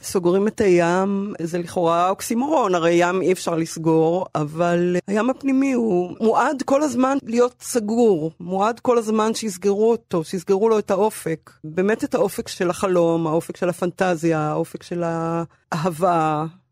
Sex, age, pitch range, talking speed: female, 30-49, 170-225 Hz, 145 wpm